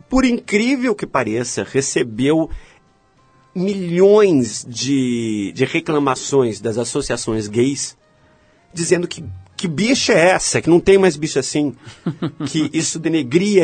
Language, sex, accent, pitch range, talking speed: Portuguese, male, Brazilian, 120-175 Hz, 120 wpm